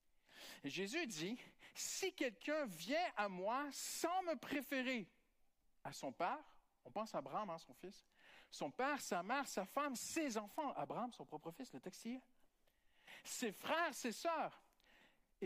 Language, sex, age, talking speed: French, male, 50-69, 170 wpm